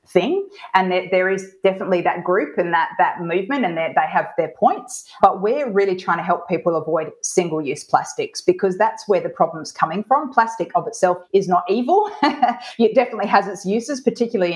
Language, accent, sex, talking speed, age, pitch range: English, Australian, female, 200 wpm, 30-49, 170-220 Hz